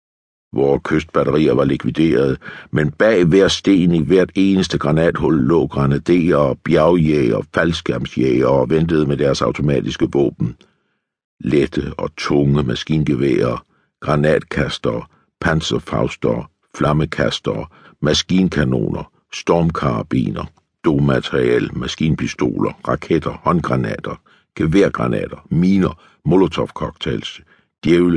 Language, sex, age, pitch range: Danish, male, 60-79, 70-85 Hz